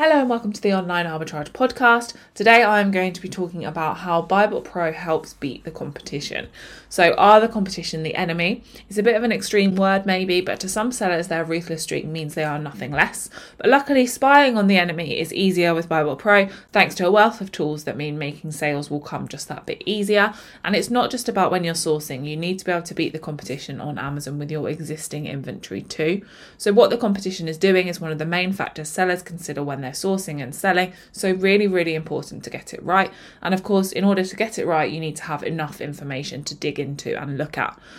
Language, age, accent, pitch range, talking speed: English, 20-39, British, 155-200 Hz, 230 wpm